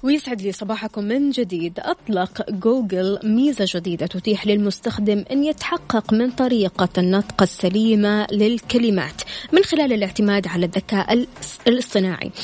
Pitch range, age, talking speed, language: 200-245 Hz, 20-39, 115 wpm, Arabic